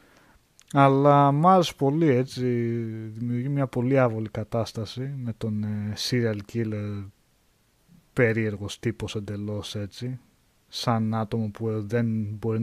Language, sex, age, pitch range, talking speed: Greek, male, 20-39, 105-125 Hz, 105 wpm